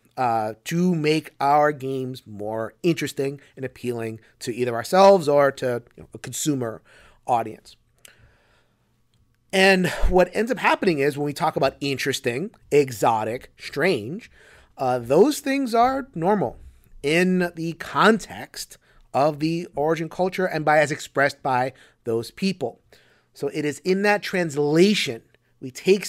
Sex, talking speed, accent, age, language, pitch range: male, 135 wpm, American, 30-49, English, 125-170 Hz